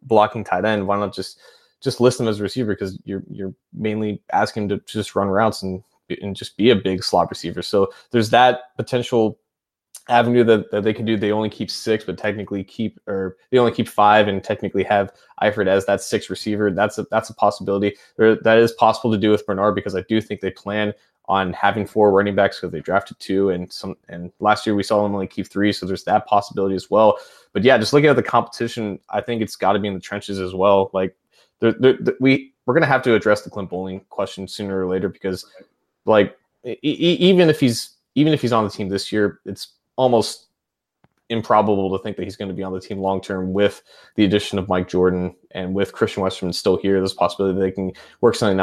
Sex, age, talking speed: male, 20-39, 235 wpm